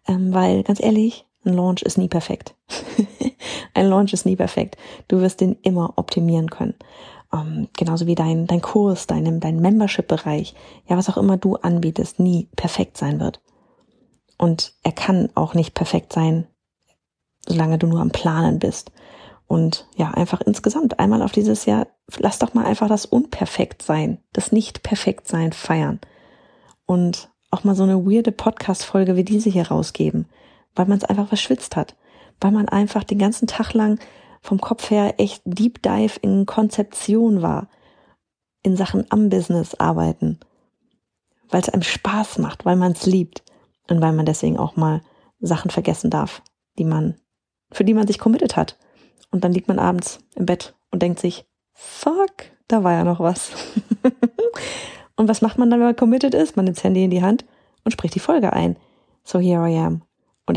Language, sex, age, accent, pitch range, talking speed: German, female, 30-49, German, 175-215 Hz, 175 wpm